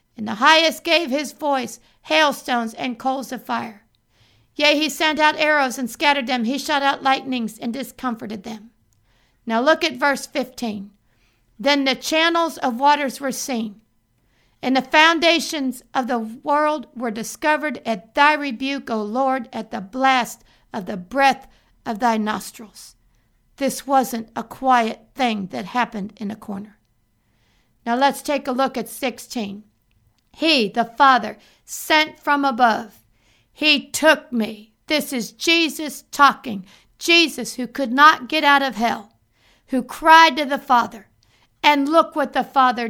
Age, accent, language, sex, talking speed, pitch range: 50-69, American, English, female, 150 wpm, 225-290 Hz